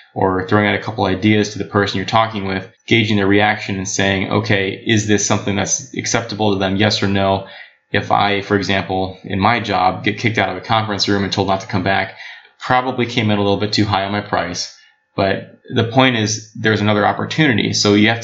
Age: 20-39